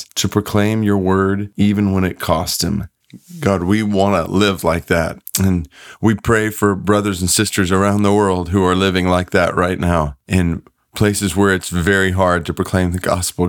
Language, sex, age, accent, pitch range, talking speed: English, male, 30-49, American, 95-110 Hz, 190 wpm